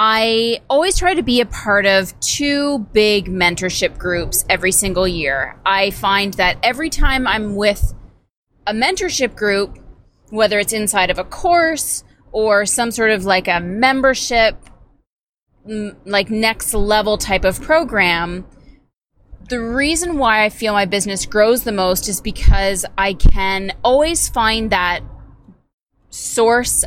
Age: 20-39